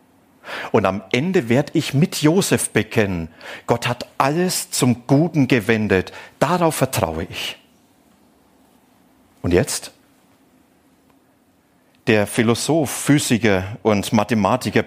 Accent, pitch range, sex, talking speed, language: German, 100-130 Hz, male, 95 wpm, German